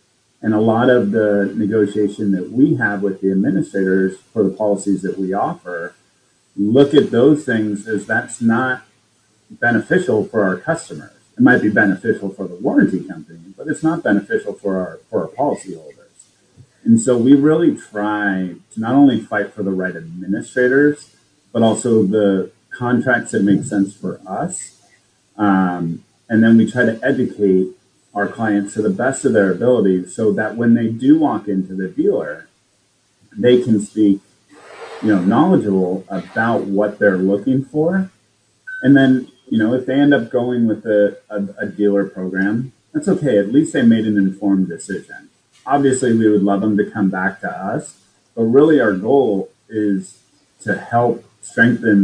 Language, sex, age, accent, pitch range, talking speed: English, male, 40-59, American, 100-125 Hz, 165 wpm